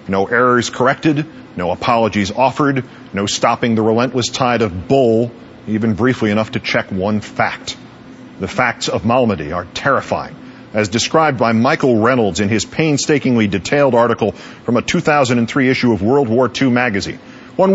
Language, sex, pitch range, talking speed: English, male, 115-145 Hz, 155 wpm